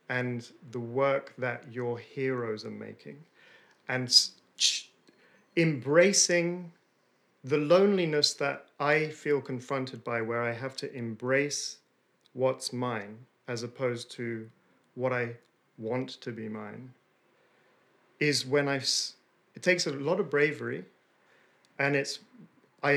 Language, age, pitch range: English, 40-59, 125-155 Hz